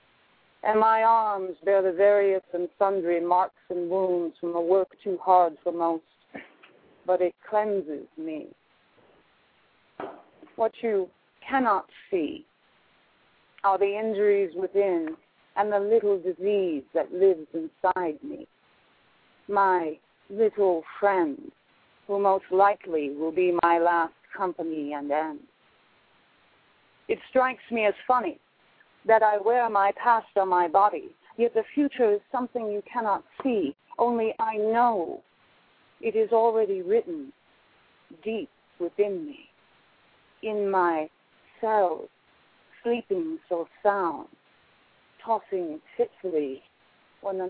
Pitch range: 175-230 Hz